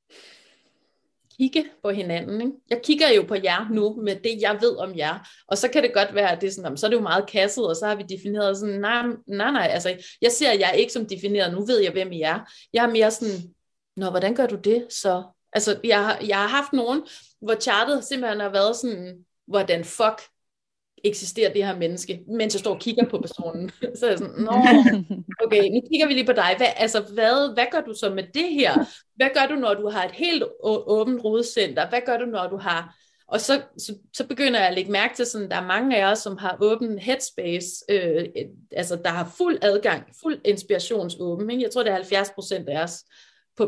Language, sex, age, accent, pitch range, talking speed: Danish, female, 30-49, native, 195-250 Hz, 230 wpm